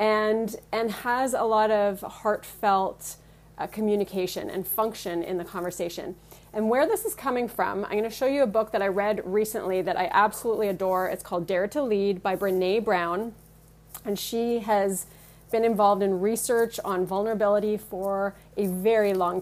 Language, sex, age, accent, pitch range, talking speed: English, female, 30-49, American, 190-250 Hz, 170 wpm